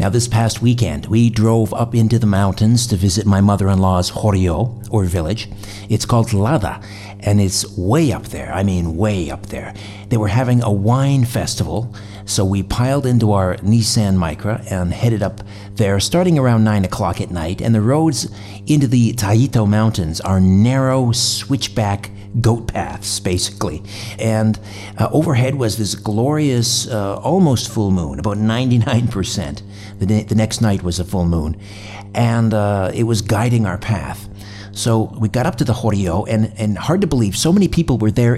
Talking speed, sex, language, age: 170 wpm, male, English, 60-79